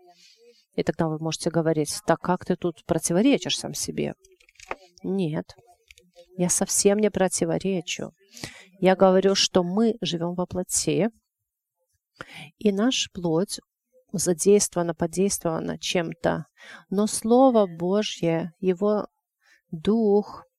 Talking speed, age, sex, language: 100 wpm, 40-59, female, English